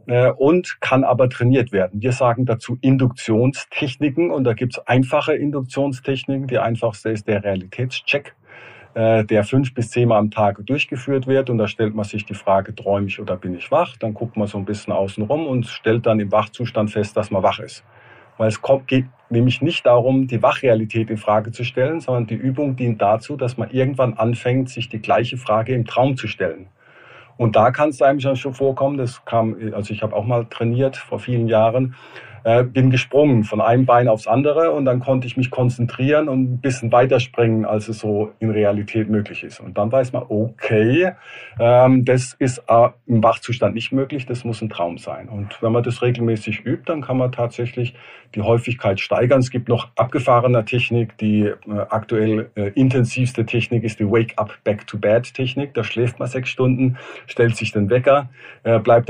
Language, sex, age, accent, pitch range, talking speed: German, male, 50-69, German, 110-130 Hz, 185 wpm